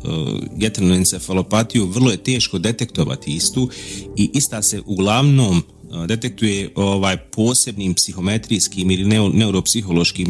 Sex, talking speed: male, 115 wpm